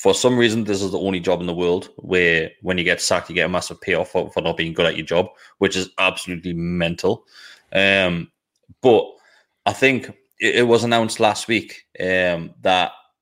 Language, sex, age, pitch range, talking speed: English, male, 20-39, 90-105 Hz, 205 wpm